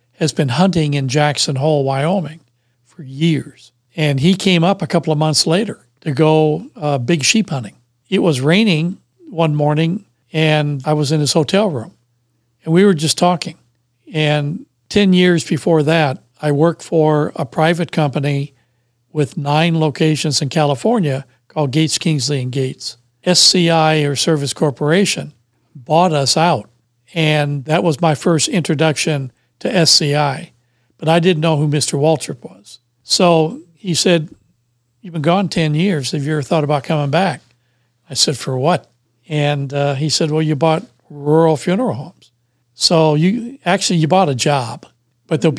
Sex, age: male, 60-79